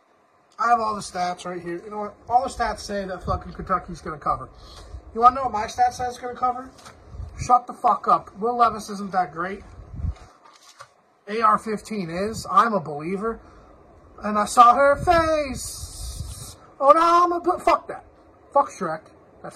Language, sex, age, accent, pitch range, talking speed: English, male, 30-49, American, 180-240 Hz, 190 wpm